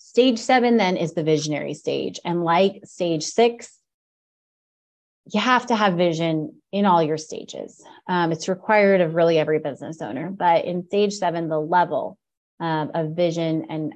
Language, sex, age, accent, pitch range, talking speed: English, female, 30-49, American, 165-205 Hz, 165 wpm